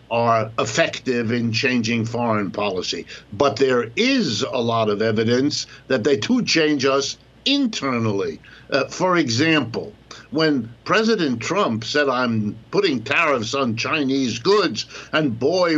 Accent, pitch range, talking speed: American, 120-150 Hz, 130 wpm